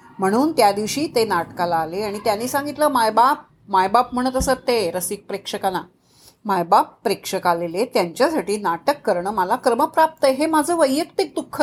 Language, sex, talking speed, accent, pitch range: Marathi, female, 150 wpm, native, 200-290 Hz